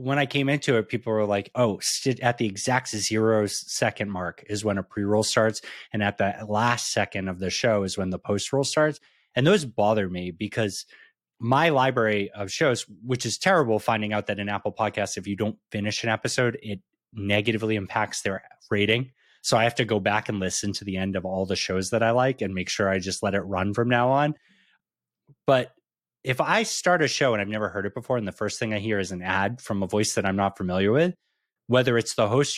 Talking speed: 230 wpm